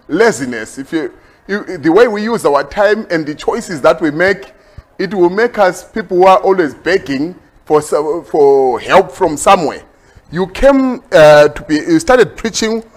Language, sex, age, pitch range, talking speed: English, male, 30-49, 165-230 Hz, 180 wpm